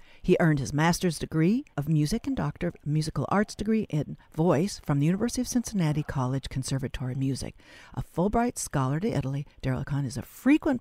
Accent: American